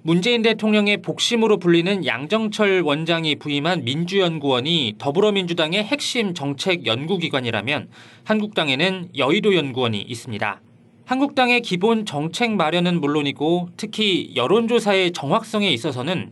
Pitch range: 130-200 Hz